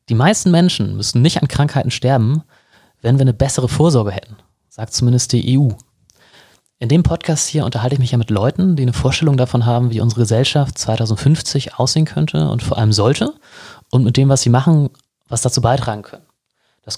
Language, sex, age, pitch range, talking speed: German, male, 30-49, 115-145 Hz, 190 wpm